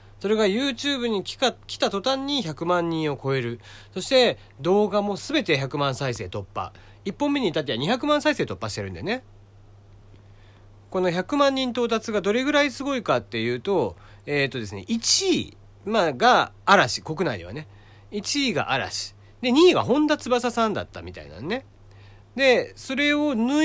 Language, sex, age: Japanese, male, 40-59